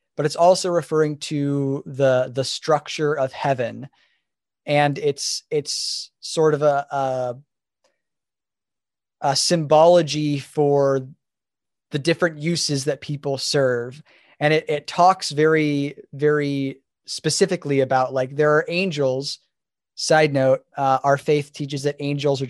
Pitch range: 135-160 Hz